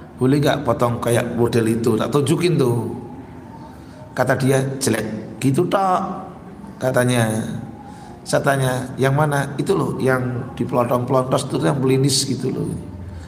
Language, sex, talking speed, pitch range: Indonesian, male, 125 wpm, 125-160 Hz